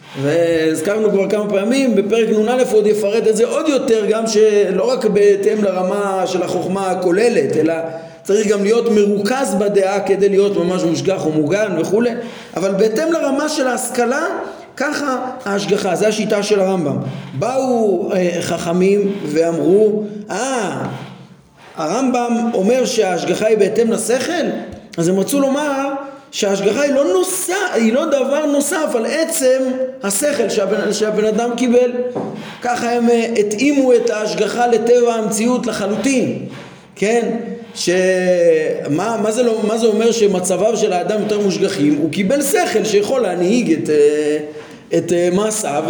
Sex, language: male, Hebrew